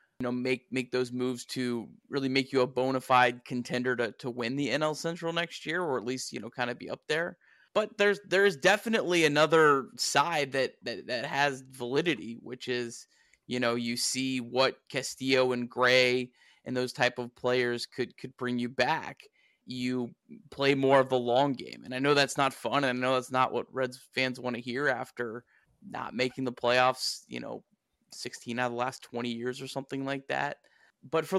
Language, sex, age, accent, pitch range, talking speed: English, male, 20-39, American, 125-155 Hz, 205 wpm